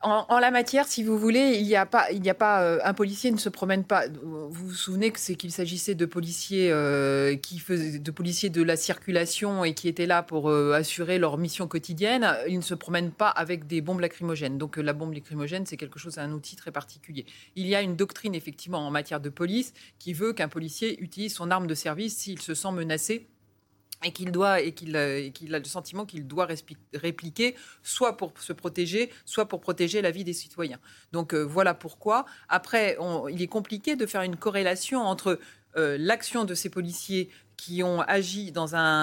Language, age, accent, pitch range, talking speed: French, 30-49, French, 160-195 Hz, 215 wpm